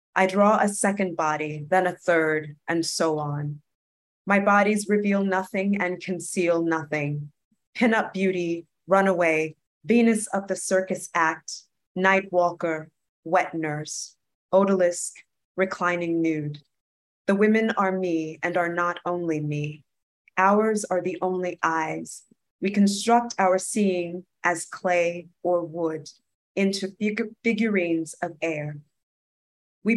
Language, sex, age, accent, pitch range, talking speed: English, female, 20-39, American, 160-195 Hz, 125 wpm